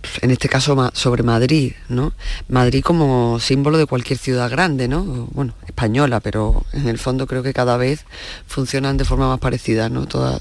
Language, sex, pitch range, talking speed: Spanish, female, 120-135 Hz, 180 wpm